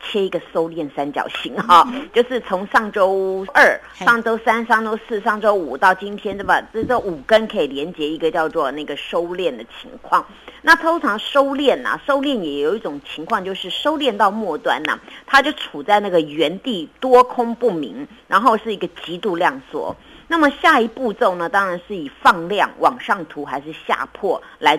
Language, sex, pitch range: Chinese, female, 165-245 Hz